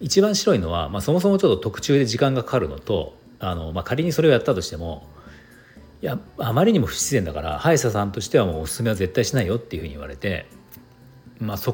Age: 40-59